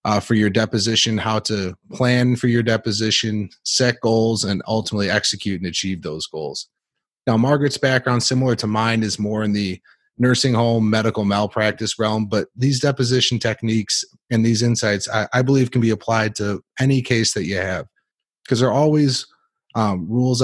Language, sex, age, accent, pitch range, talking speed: English, male, 30-49, American, 105-125 Hz, 175 wpm